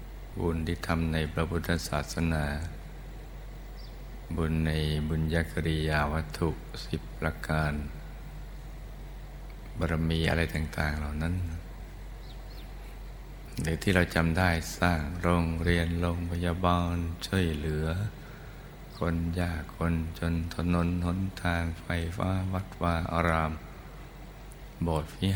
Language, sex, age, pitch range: Thai, male, 60-79, 80-90 Hz